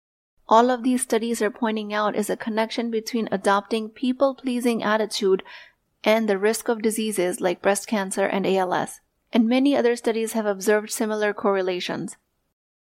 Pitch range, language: 205-240 Hz, English